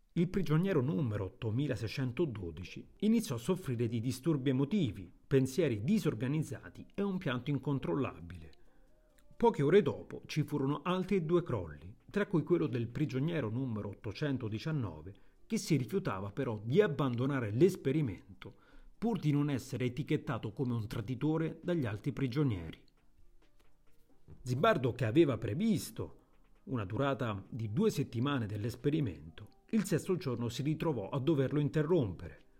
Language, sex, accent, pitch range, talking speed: Italian, male, native, 115-165 Hz, 125 wpm